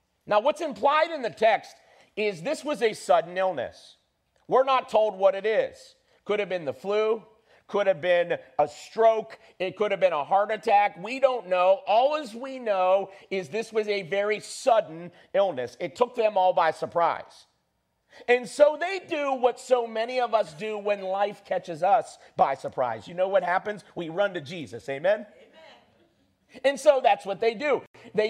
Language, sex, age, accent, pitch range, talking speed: English, male, 50-69, American, 180-240 Hz, 185 wpm